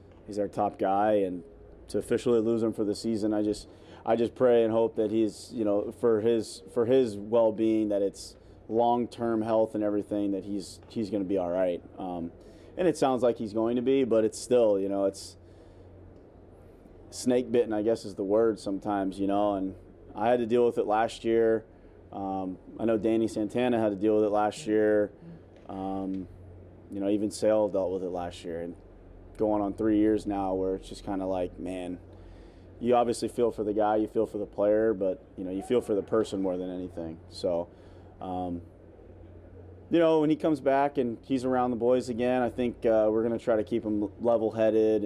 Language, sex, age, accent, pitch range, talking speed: English, male, 30-49, American, 90-115 Hz, 210 wpm